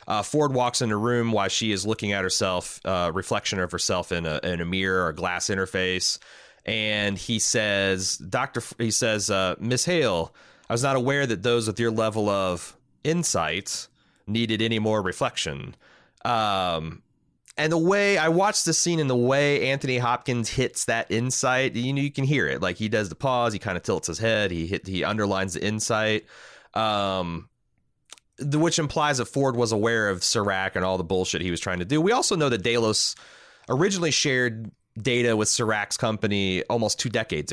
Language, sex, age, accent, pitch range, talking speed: English, male, 30-49, American, 95-125 Hz, 190 wpm